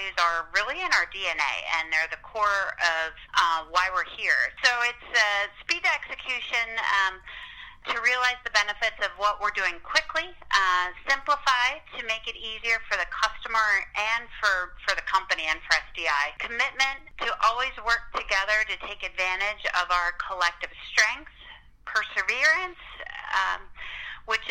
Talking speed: 150 wpm